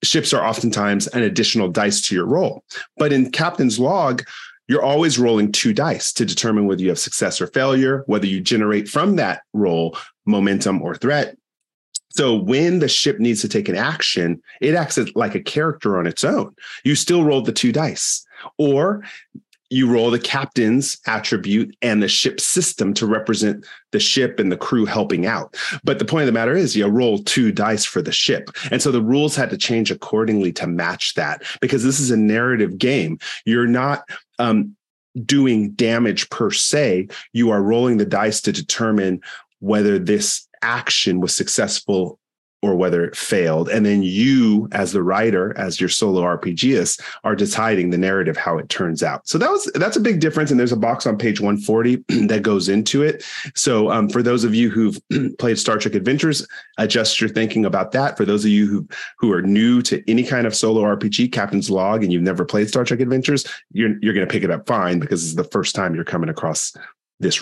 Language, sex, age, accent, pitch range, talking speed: English, male, 30-49, American, 105-130 Hz, 200 wpm